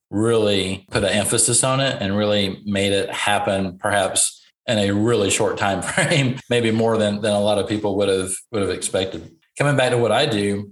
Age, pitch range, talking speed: 40-59, 100-115 Hz, 205 wpm